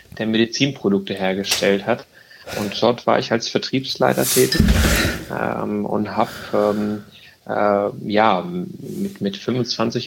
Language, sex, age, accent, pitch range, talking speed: German, male, 30-49, German, 100-120 Hz, 120 wpm